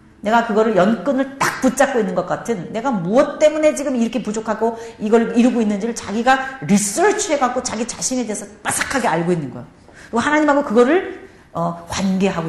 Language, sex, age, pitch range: Korean, female, 40-59, 205-280 Hz